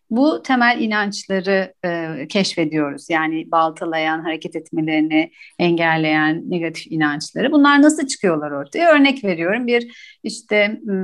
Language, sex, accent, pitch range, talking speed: Turkish, female, native, 180-240 Hz, 110 wpm